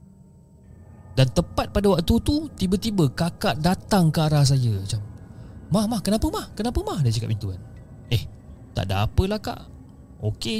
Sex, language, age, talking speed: male, Malay, 30-49, 160 wpm